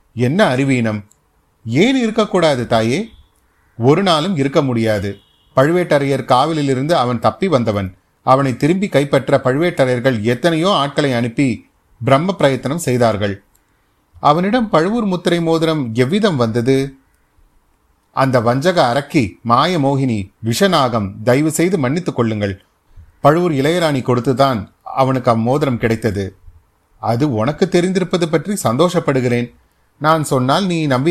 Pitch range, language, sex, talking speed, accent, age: 115-165 Hz, Tamil, male, 105 wpm, native, 30-49